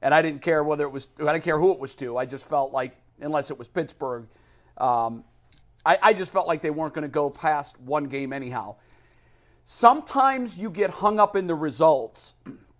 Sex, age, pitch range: male, 40-59, 155-210 Hz